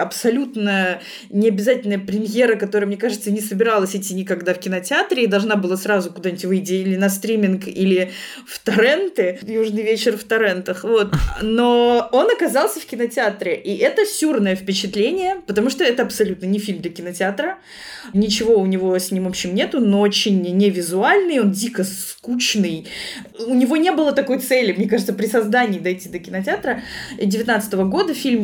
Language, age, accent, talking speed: Russian, 20-39, native, 160 wpm